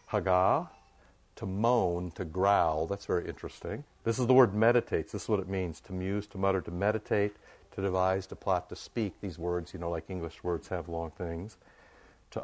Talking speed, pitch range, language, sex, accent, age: 200 wpm, 90-110 Hz, English, male, American, 60-79